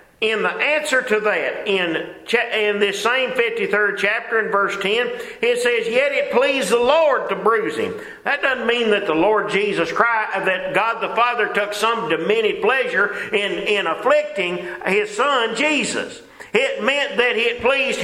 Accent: American